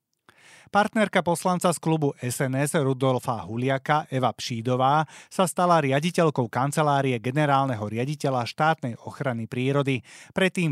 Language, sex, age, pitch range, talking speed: Slovak, male, 30-49, 120-155 Hz, 105 wpm